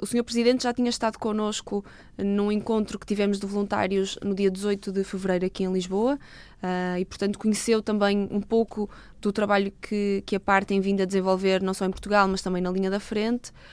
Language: Portuguese